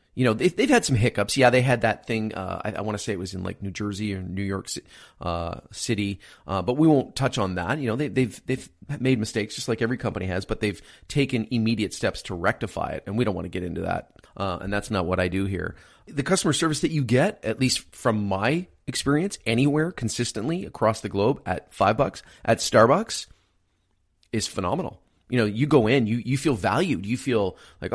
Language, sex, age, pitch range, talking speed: English, male, 30-49, 100-130 Hz, 230 wpm